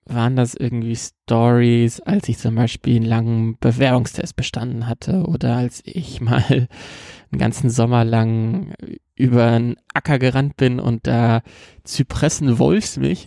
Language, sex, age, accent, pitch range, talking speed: German, male, 20-39, German, 120-145 Hz, 130 wpm